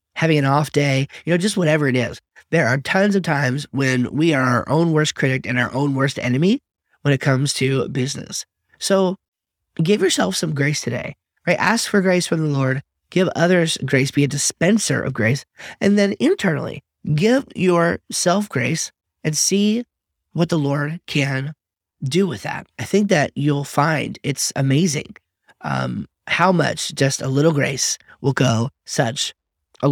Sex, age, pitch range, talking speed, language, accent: male, 30-49, 135-180 Hz, 175 wpm, English, American